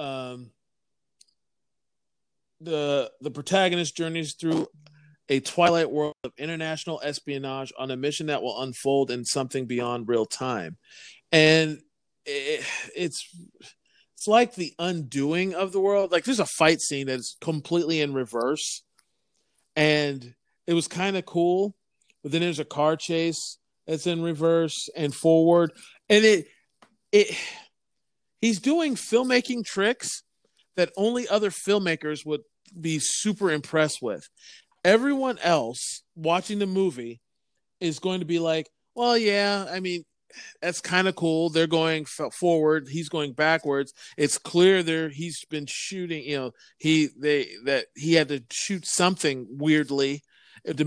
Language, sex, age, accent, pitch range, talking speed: English, male, 40-59, American, 145-185 Hz, 140 wpm